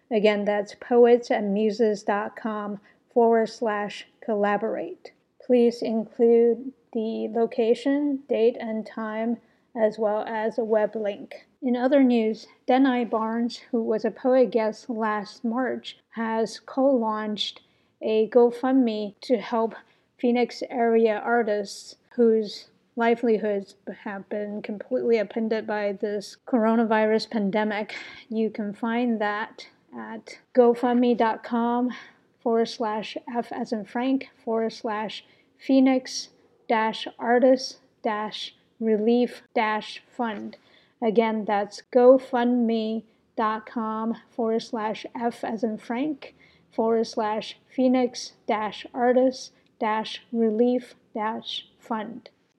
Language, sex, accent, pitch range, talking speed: English, female, American, 220-245 Hz, 95 wpm